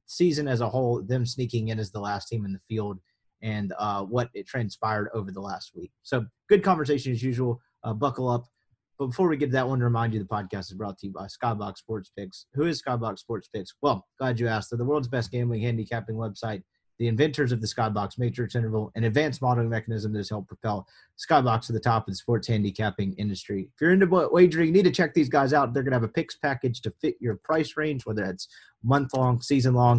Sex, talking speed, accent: male, 235 wpm, American